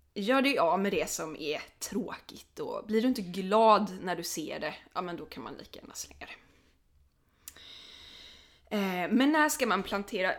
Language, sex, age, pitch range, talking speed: English, female, 20-39, 175-235 Hz, 185 wpm